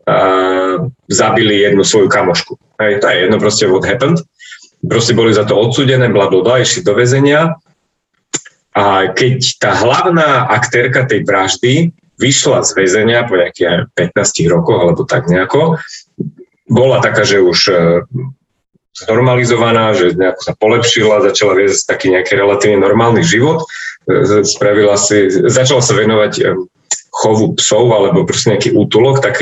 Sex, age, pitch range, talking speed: male, 30-49, 110-155 Hz, 135 wpm